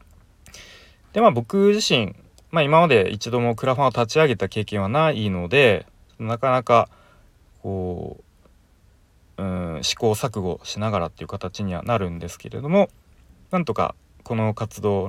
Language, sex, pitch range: Japanese, male, 90-120 Hz